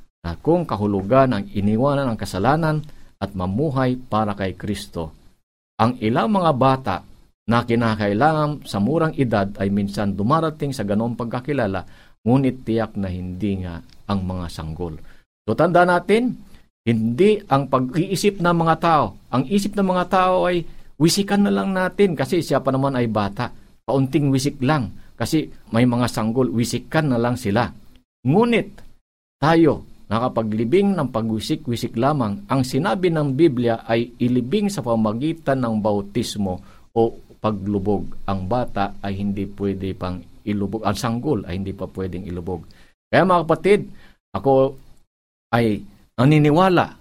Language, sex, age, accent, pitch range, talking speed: Filipino, male, 50-69, native, 100-150 Hz, 140 wpm